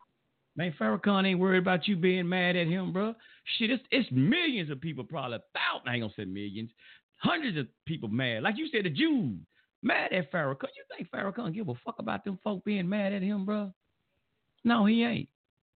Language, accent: English, American